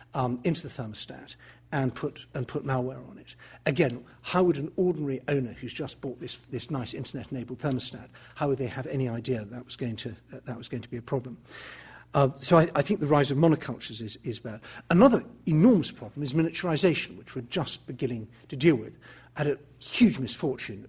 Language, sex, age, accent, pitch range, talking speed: English, male, 50-69, British, 125-155 Hz, 210 wpm